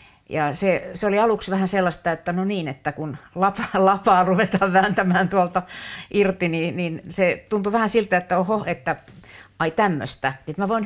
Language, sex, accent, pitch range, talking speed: Finnish, female, native, 150-185 Hz, 170 wpm